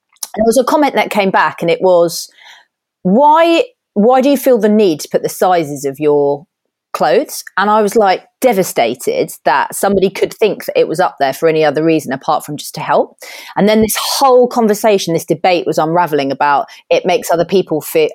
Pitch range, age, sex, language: 165-250 Hz, 30-49, female, English